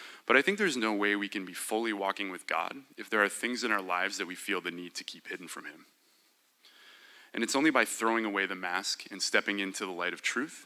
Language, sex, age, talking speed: English, male, 20-39, 255 wpm